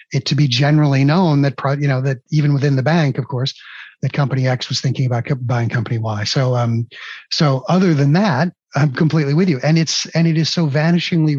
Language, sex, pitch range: English, male, 130-155 Hz